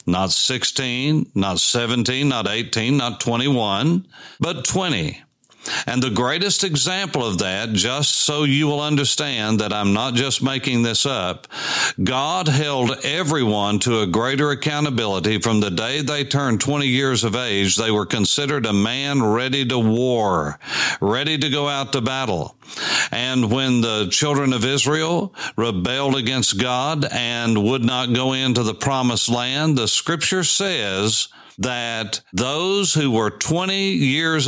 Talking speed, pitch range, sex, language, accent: 145 wpm, 110-145 Hz, male, English, American